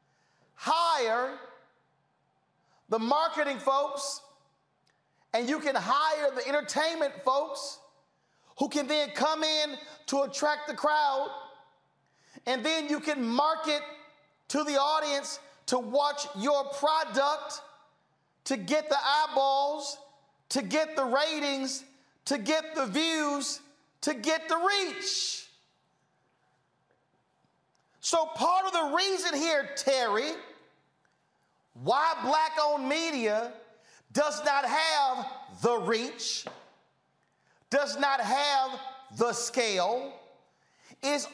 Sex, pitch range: male, 250-300 Hz